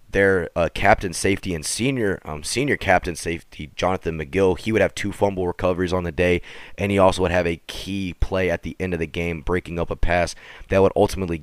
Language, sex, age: English, male, 20-39